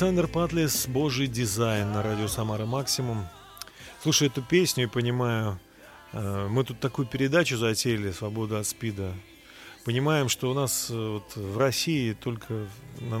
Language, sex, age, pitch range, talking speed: Russian, male, 30-49, 110-135 Hz, 135 wpm